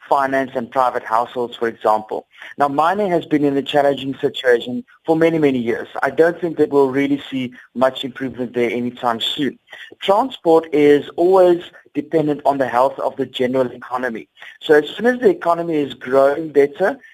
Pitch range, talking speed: 130-160 Hz, 175 wpm